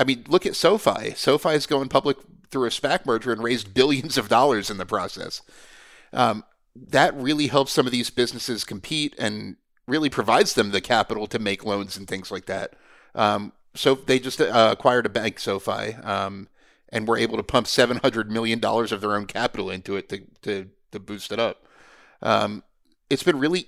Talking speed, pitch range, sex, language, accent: 200 wpm, 105-140 Hz, male, English, American